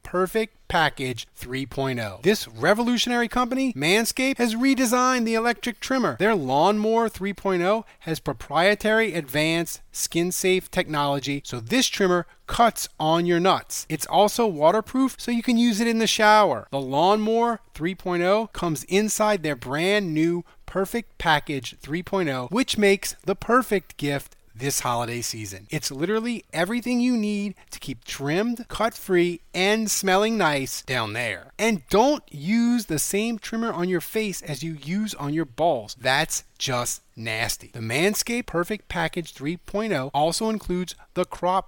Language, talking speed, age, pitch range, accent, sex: English, 145 wpm, 30-49, 140-215 Hz, American, male